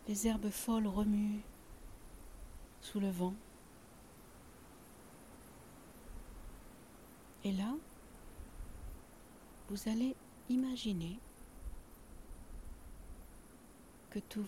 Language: French